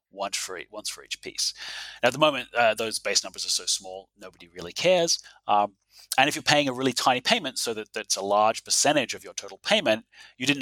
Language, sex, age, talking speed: English, male, 30-49, 220 wpm